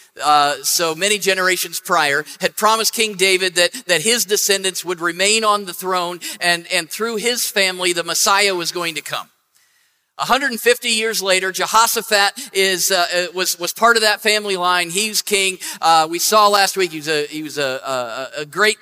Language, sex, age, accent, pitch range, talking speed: English, male, 50-69, American, 180-225 Hz, 185 wpm